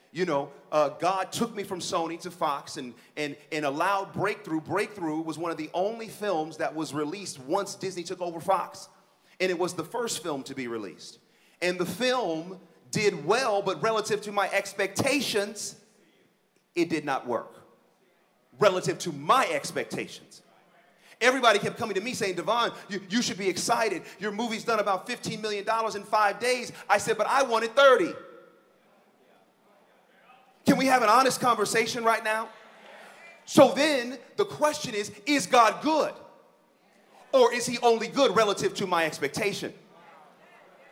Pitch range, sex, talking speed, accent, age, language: 185-240 Hz, male, 155 wpm, American, 40-59, English